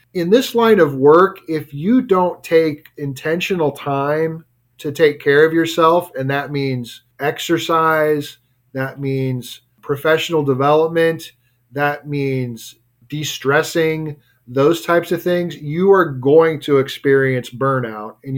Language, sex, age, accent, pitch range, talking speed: English, male, 40-59, American, 130-160 Hz, 125 wpm